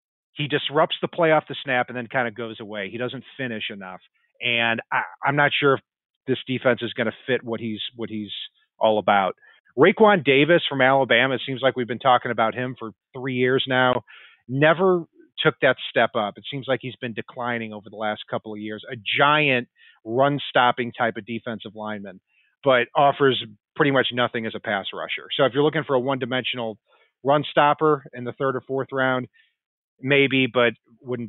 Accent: American